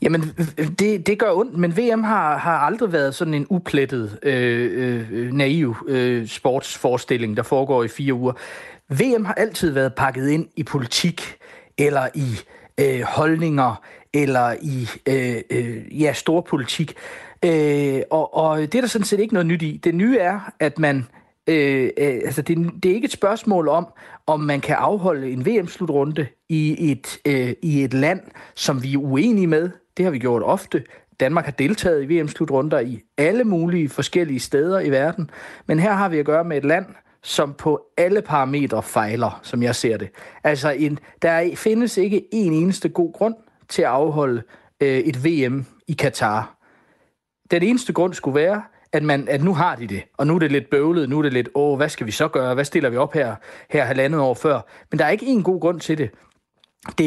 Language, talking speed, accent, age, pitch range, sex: Danish, 195 wpm, native, 40-59, 135-175 Hz, male